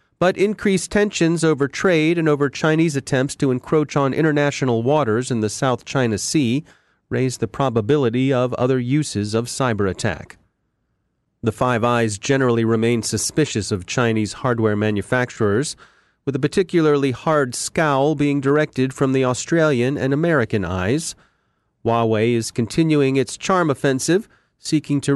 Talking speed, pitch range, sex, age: 140 wpm, 115-150 Hz, male, 30-49